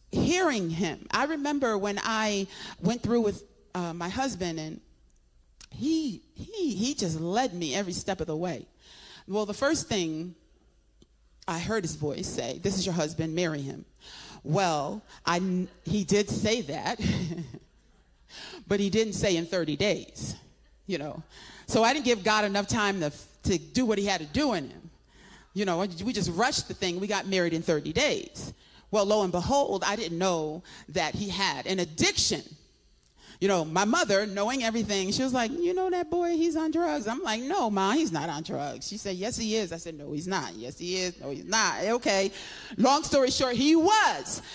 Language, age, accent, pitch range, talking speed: English, 40-59, American, 175-235 Hz, 190 wpm